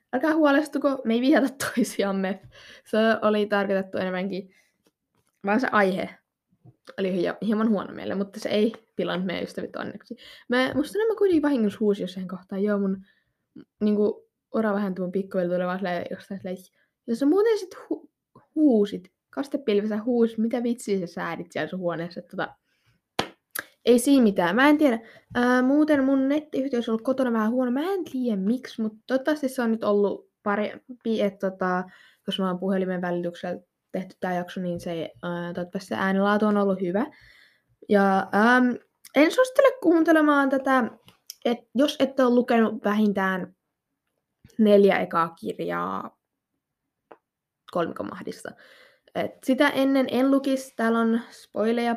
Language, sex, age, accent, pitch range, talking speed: Finnish, female, 20-39, native, 195-265 Hz, 145 wpm